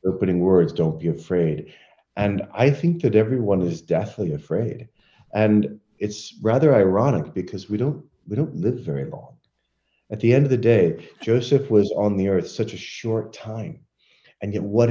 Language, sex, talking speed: English, male, 175 wpm